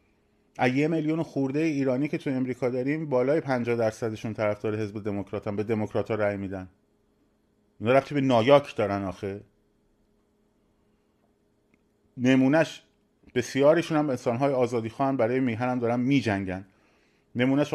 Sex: male